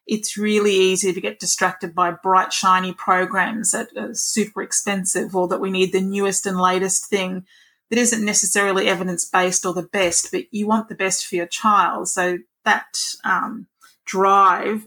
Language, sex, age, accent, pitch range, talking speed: English, female, 30-49, Australian, 185-210 Hz, 170 wpm